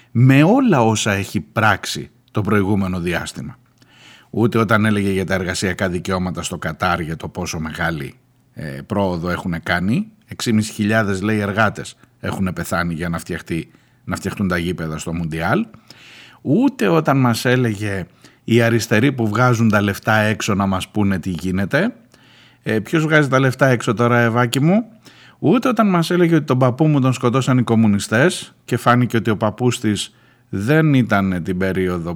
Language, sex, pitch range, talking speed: Greek, male, 100-135 Hz, 160 wpm